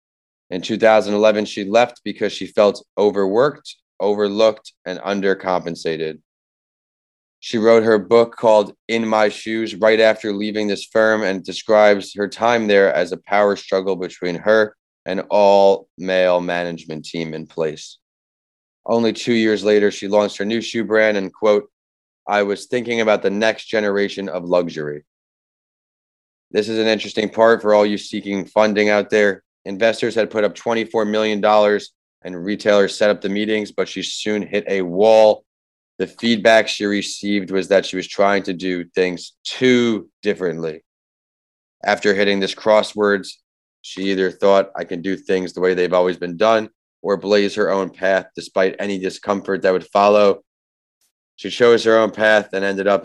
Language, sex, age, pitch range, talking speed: English, male, 30-49, 95-110 Hz, 160 wpm